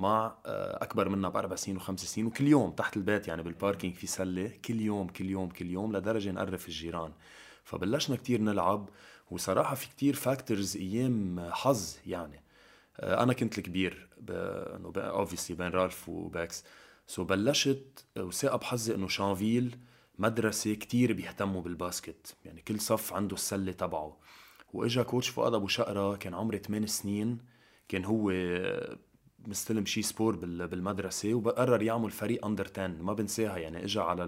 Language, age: Arabic, 20-39